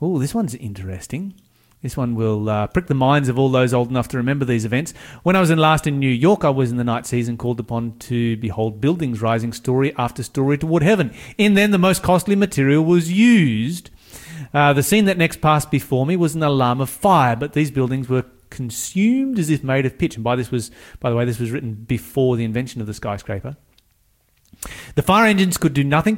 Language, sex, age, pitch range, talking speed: English, male, 30-49, 120-160 Hz, 225 wpm